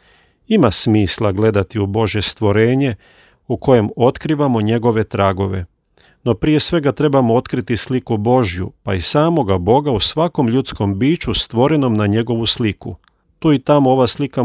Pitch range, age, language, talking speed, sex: 100-130 Hz, 40-59, Croatian, 145 wpm, male